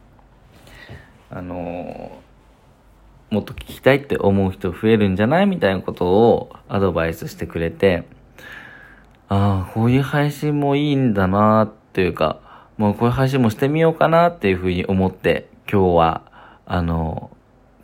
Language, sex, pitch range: Japanese, male, 90-110 Hz